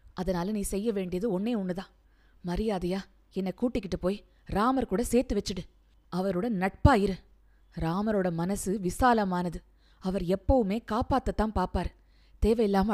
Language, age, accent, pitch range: Tamil, 20-39, native, 185-225 Hz